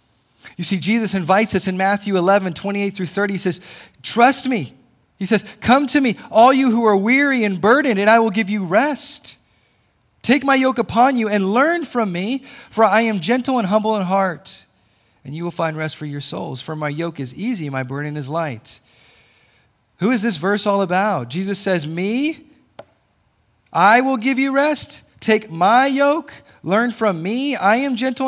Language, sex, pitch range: English, male, 150-225 Hz